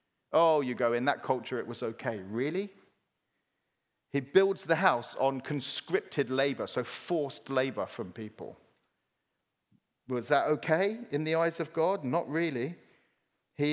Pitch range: 140-190 Hz